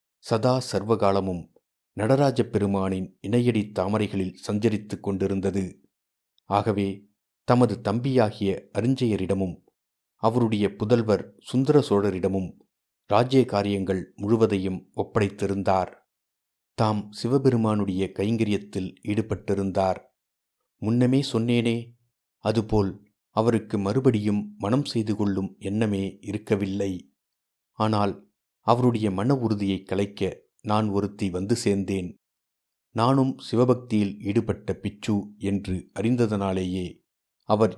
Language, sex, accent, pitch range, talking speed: Tamil, male, native, 100-115 Hz, 75 wpm